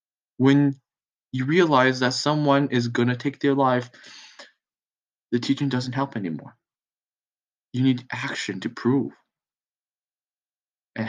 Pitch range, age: 110-130 Hz, 20-39